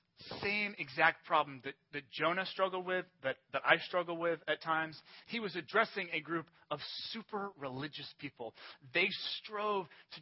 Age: 30-49